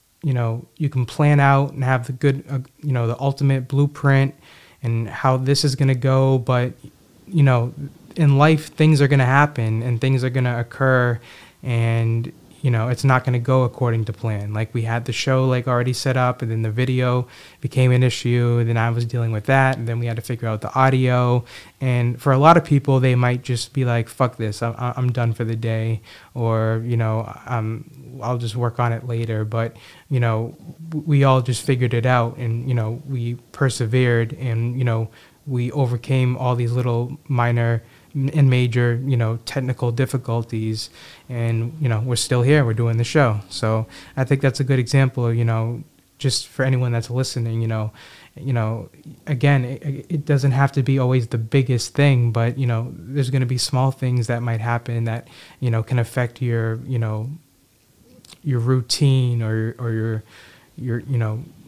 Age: 20-39